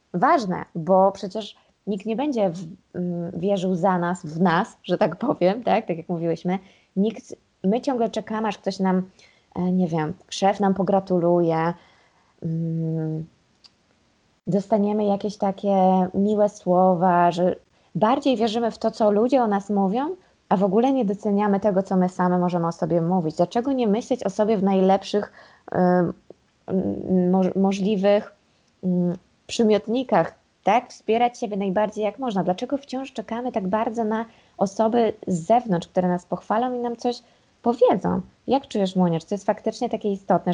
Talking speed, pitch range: 145 wpm, 180-215 Hz